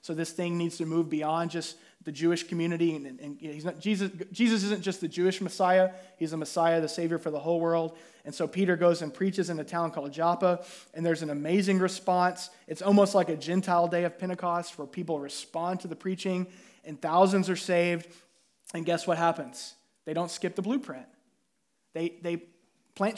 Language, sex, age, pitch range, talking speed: English, male, 20-39, 165-190 Hz, 200 wpm